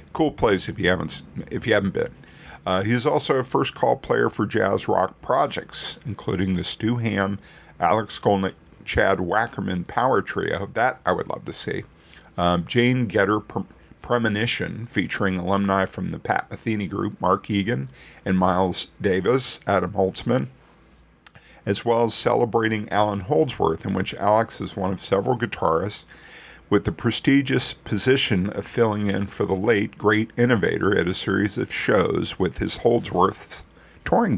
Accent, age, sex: American, 50-69, male